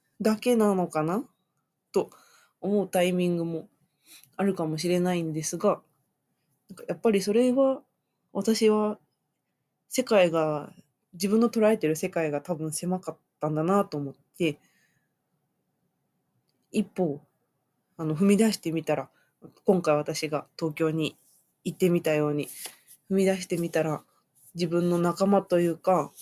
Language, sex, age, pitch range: Japanese, female, 20-39, 160-195 Hz